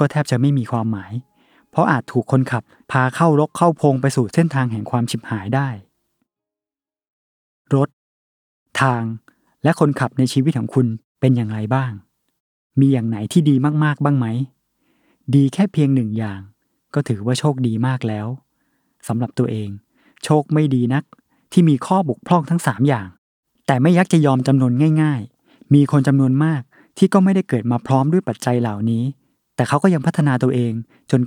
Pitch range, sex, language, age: 115-150 Hz, male, Thai, 20-39